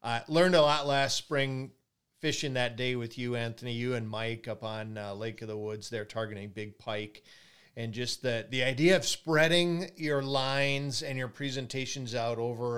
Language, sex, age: English, male, 40-59